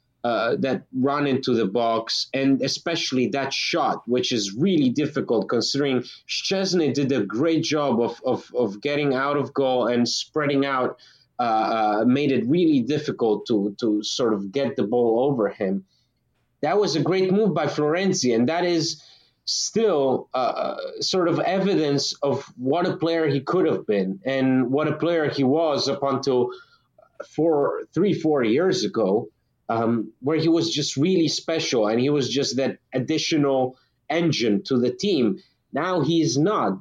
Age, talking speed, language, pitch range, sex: 30-49, 165 wpm, English, 130-165 Hz, male